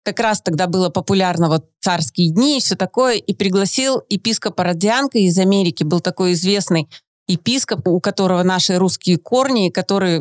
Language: Russian